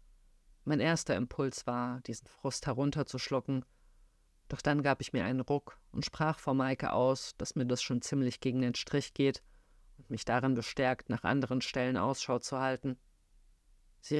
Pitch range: 120-135 Hz